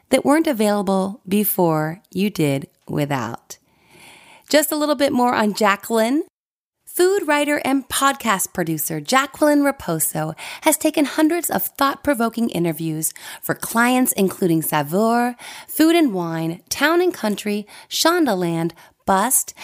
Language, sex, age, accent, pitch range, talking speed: English, female, 30-49, American, 170-260 Hz, 115 wpm